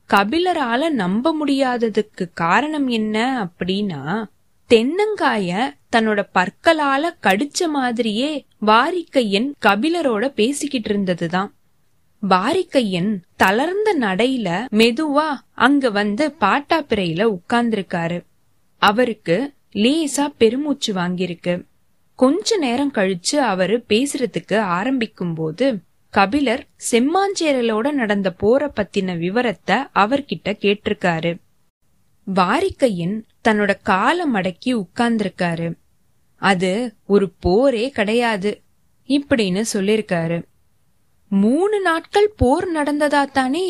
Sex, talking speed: female, 75 wpm